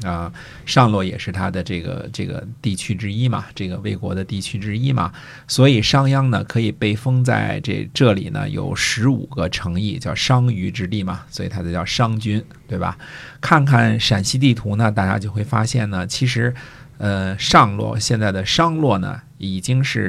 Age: 50-69